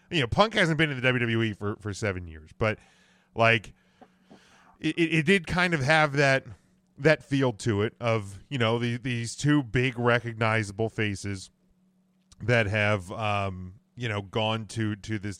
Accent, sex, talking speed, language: American, male, 170 wpm, English